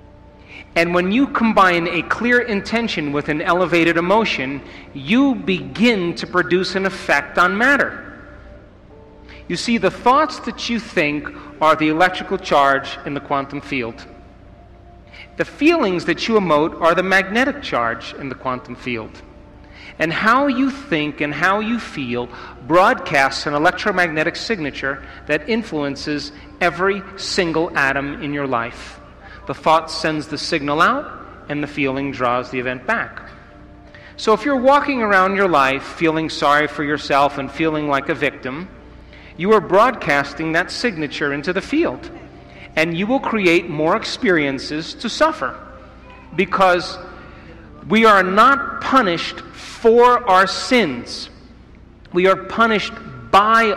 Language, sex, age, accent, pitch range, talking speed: English, male, 40-59, American, 140-195 Hz, 140 wpm